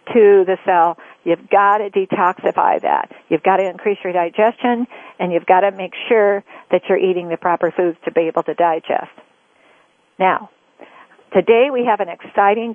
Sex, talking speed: female, 175 wpm